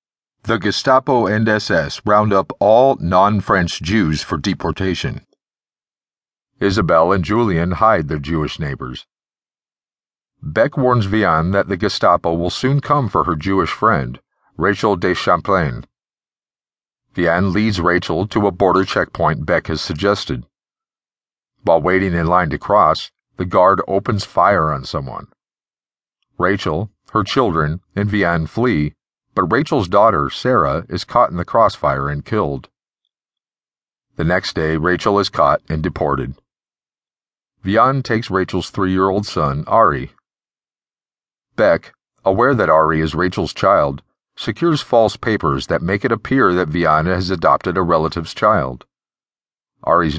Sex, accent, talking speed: male, American, 130 wpm